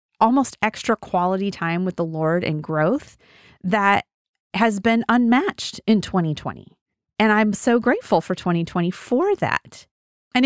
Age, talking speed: 30-49, 140 wpm